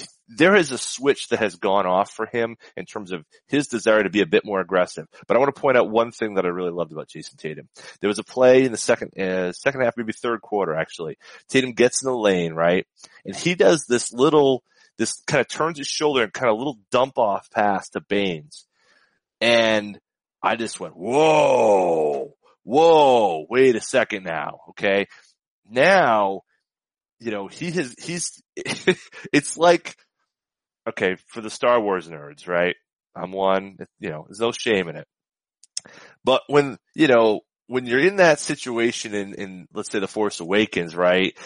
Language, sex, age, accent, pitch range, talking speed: English, male, 30-49, American, 100-130 Hz, 185 wpm